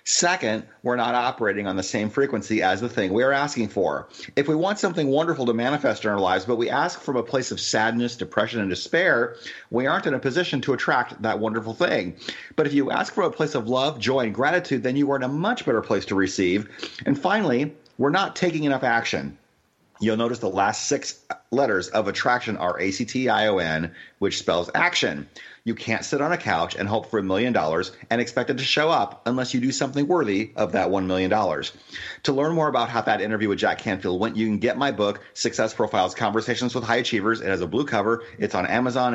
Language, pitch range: English, 105-130 Hz